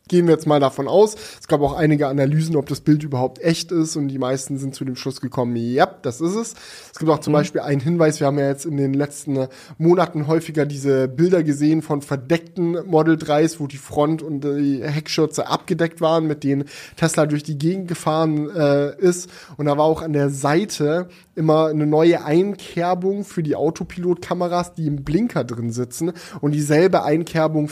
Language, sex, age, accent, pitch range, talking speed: German, male, 10-29, German, 145-175 Hz, 200 wpm